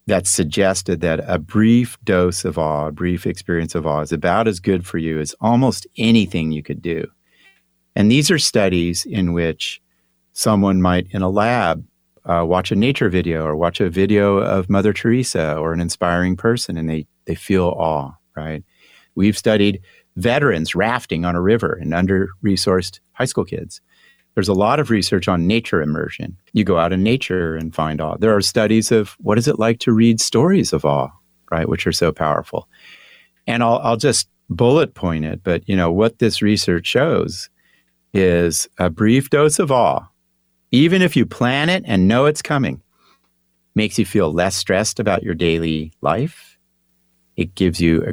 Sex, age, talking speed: male, 50-69, 180 wpm